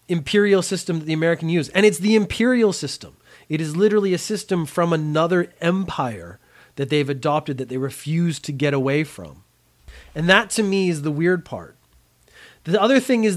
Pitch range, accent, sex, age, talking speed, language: 135-180 Hz, American, male, 30-49, 185 wpm, English